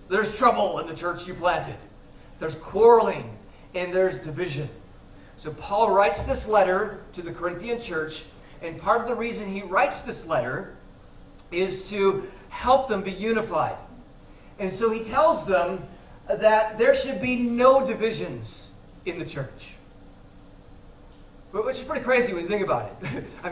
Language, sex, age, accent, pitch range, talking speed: English, male, 40-59, American, 180-235 Hz, 155 wpm